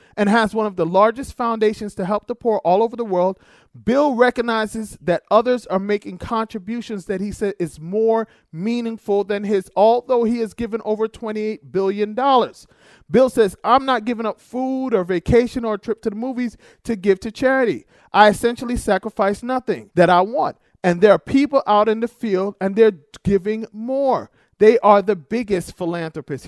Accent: American